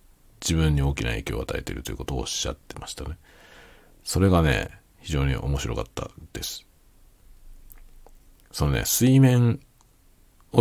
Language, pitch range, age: Japanese, 75-120 Hz, 40-59